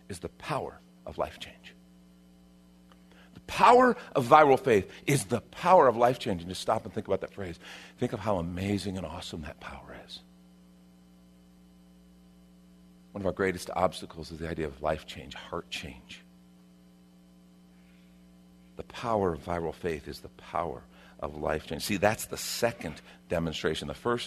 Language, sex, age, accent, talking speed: English, male, 50-69, American, 160 wpm